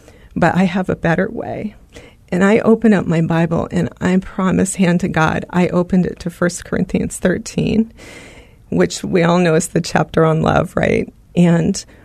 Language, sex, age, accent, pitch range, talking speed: English, female, 40-59, American, 170-195 Hz, 180 wpm